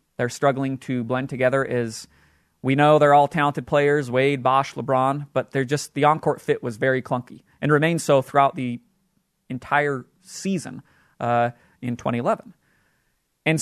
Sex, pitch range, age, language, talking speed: male, 130-155 Hz, 30-49, English, 155 wpm